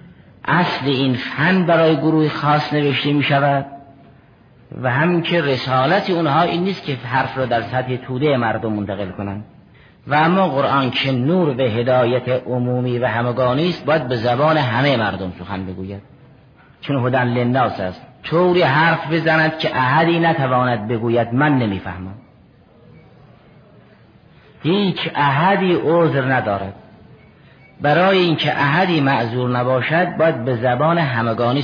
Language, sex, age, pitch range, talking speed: Persian, male, 50-69, 120-160 Hz, 135 wpm